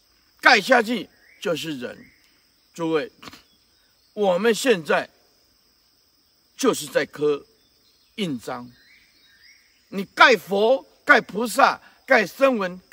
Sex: male